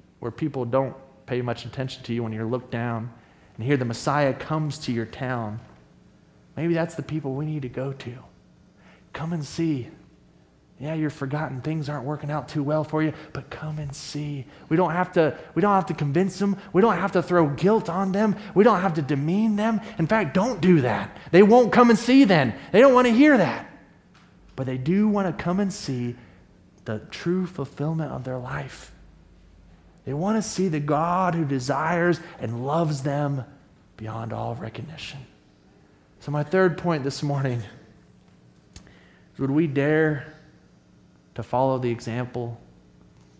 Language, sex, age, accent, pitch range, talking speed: English, male, 30-49, American, 115-165 Hz, 180 wpm